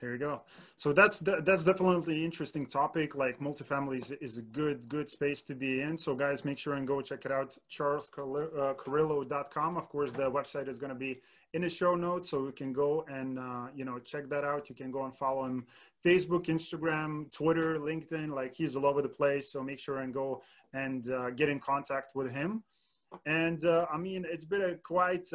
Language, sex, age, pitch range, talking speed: English, male, 20-39, 130-160 Hz, 215 wpm